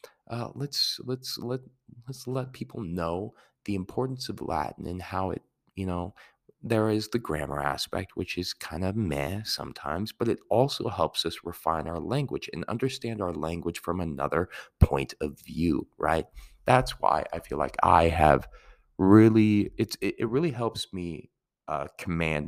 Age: 30-49